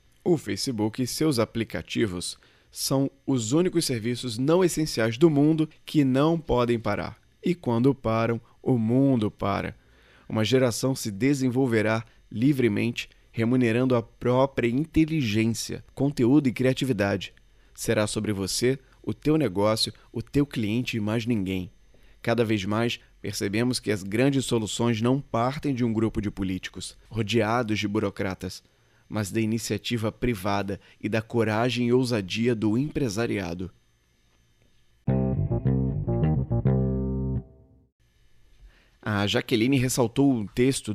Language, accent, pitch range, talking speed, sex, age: Portuguese, Brazilian, 105-135 Hz, 120 wpm, male, 20-39